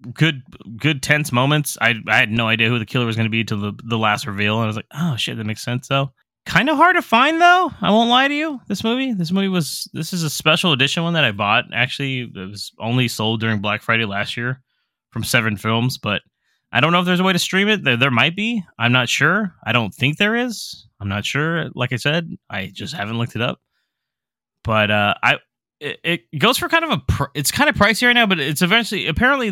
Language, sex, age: English, male, 20-39